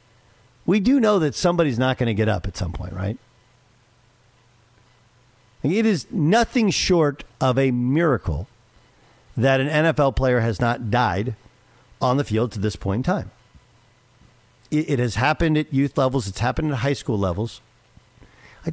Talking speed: 155 wpm